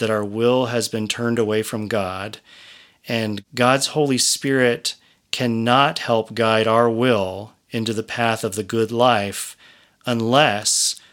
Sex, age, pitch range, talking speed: male, 40-59, 110-130 Hz, 140 wpm